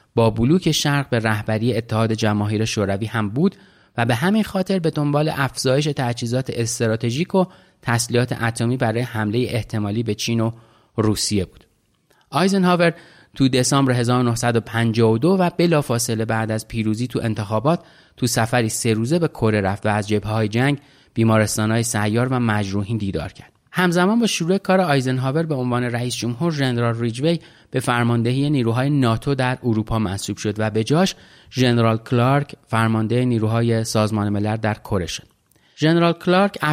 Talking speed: 150 wpm